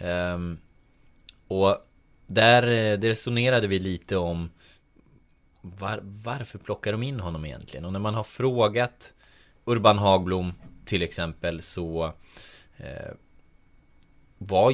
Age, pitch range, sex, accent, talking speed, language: 20-39, 85-115 Hz, male, native, 100 wpm, Swedish